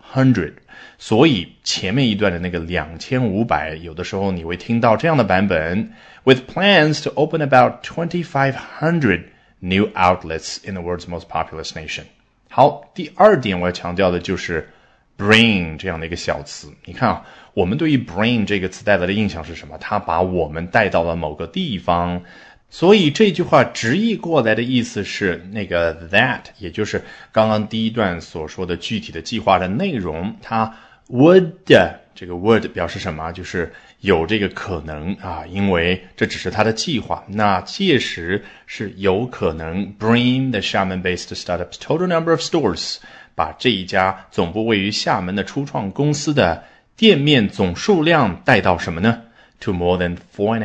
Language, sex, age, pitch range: Chinese, male, 20-39, 90-120 Hz